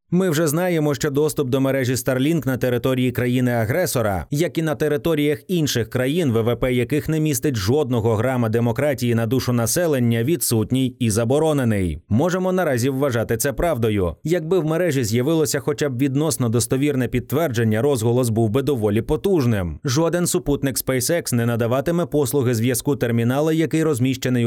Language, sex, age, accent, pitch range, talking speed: Ukrainian, male, 30-49, native, 120-155 Hz, 145 wpm